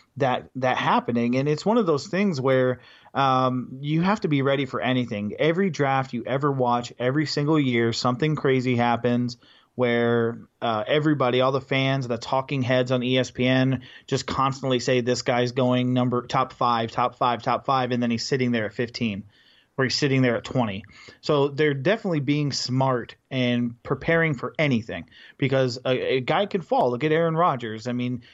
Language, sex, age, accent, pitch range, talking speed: English, male, 30-49, American, 120-135 Hz, 185 wpm